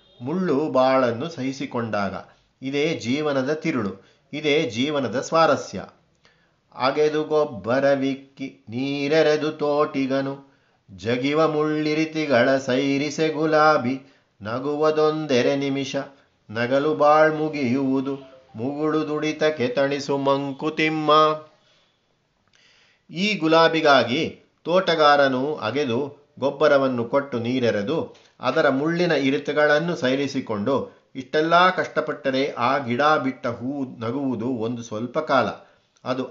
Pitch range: 130-155 Hz